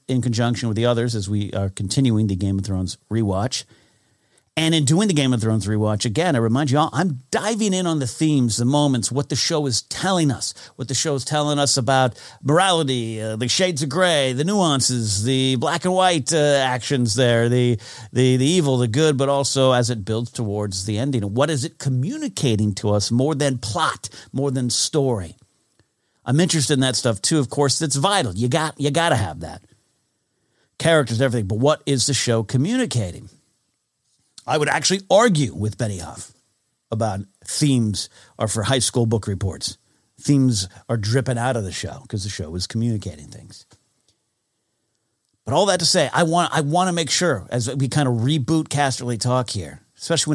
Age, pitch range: 50-69, 110-145 Hz